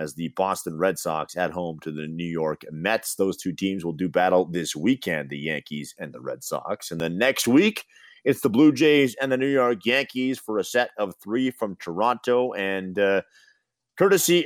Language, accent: English, American